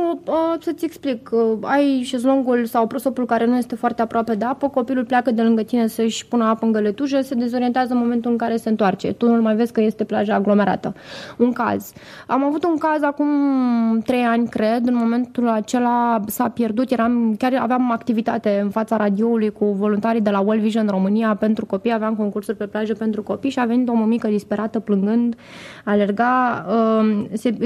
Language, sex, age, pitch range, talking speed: Romanian, female, 20-39, 215-250 Hz, 190 wpm